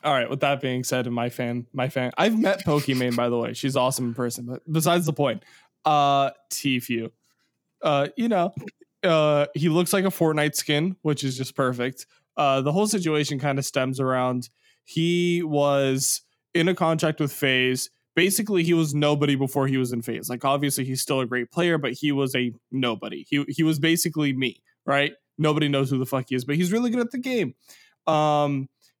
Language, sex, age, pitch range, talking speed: English, male, 20-39, 130-155 Hz, 205 wpm